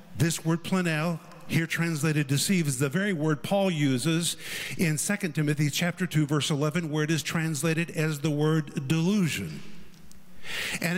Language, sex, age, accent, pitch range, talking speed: English, male, 50-69, American, 145-185 Hz, 155 wpm